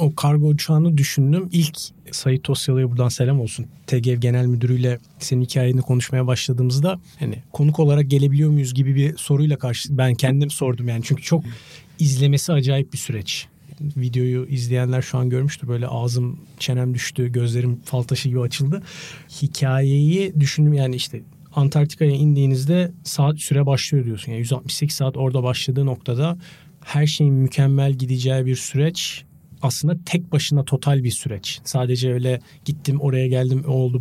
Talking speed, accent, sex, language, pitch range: 150 wpm, native, male, Turkish, 130-155 Hz